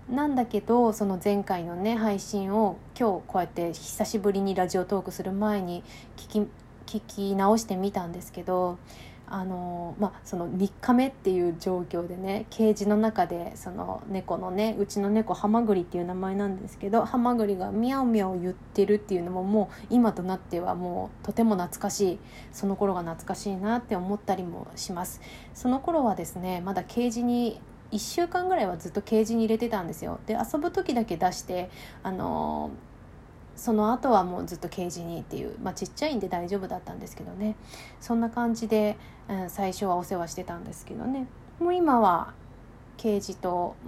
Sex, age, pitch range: female, 20-39, 180-225 Hz